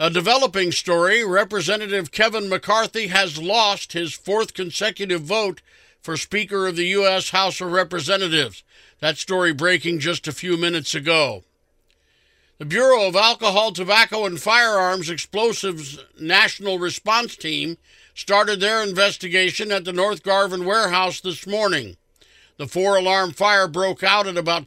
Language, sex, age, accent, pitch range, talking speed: English, male, 50-69, American, 170-205 Hz, 135 wpm